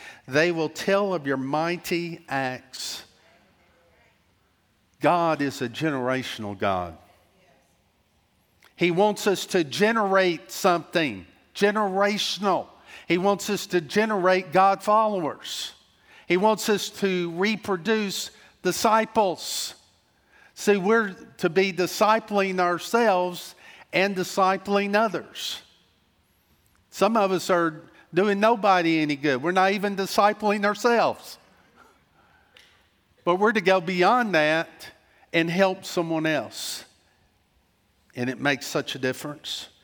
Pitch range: 155-200 Hz